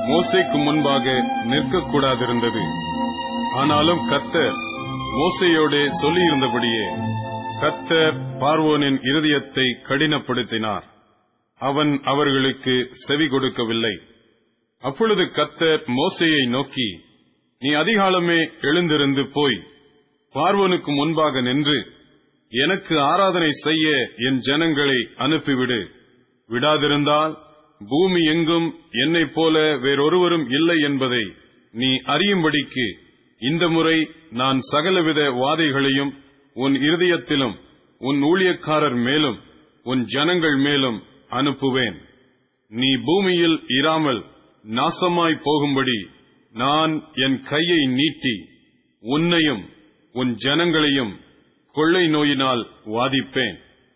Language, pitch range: Tamil, 130-160 Hz